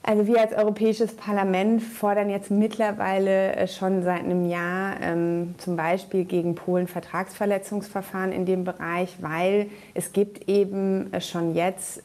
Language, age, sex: German, 30-49, female